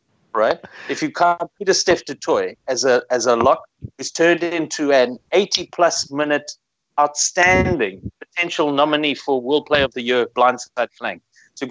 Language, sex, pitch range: English, male, 130-175 Hz